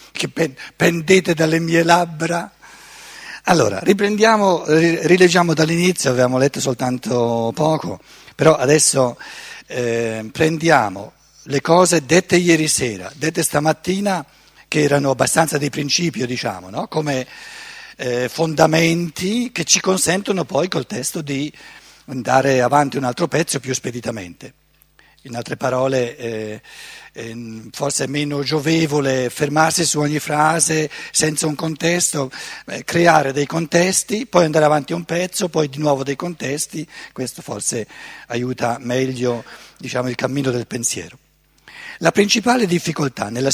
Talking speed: 120 wpm